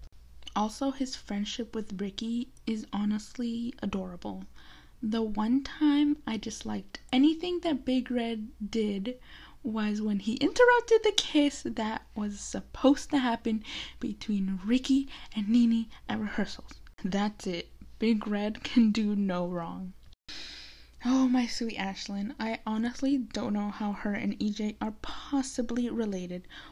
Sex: female